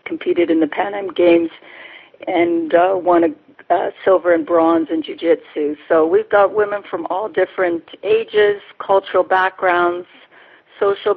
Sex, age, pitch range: female, 50-69, 165-190 Hz